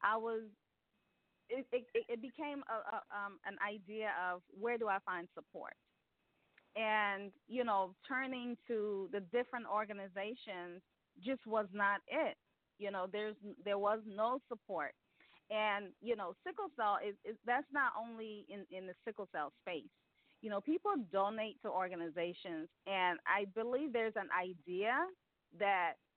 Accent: American